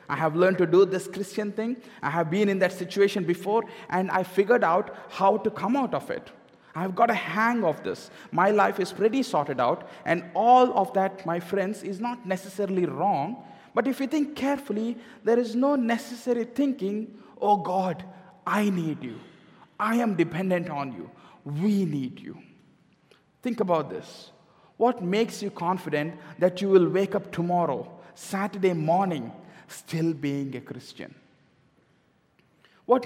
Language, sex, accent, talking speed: English, male, Indian, 165 wpm